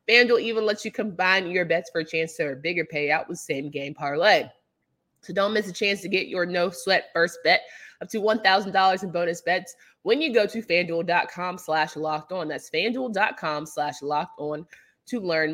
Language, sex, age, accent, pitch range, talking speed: English, female, 20-39, American, 160-225 Hz, 200 wpm